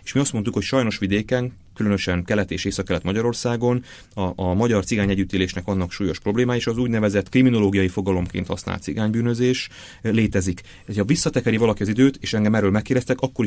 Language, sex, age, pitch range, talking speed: Hungarian, male, 30-49, 90-115 Hz, 165 wpm